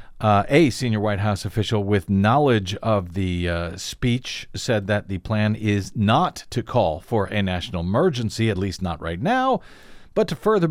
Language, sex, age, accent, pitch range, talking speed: English, male, 50-69, American, 105-175 Hz, 170 wpm